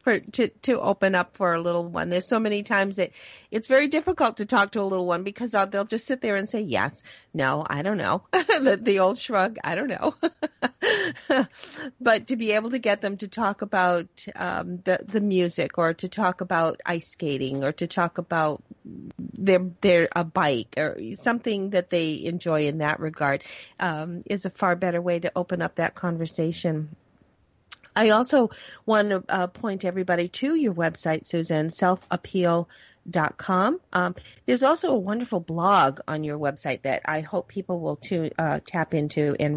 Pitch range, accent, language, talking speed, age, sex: 170-220 Hz, American, English, 185 wpm, 40-59, female